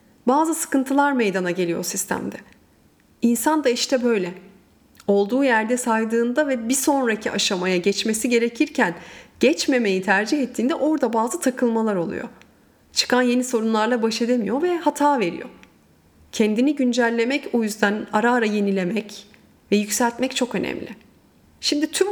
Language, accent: Turkish, native